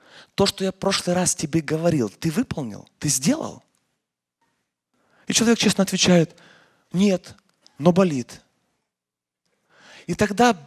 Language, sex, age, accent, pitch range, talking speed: Russian, male, 30-49, native, 180-235 Hz, 120 wpm